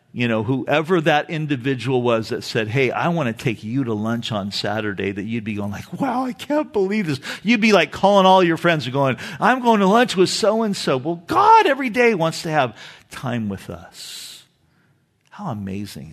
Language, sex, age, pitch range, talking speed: English, male, 50-69, 110-150 Hz, 205 wpm